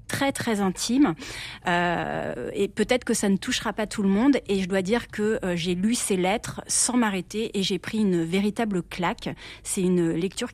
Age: 30-49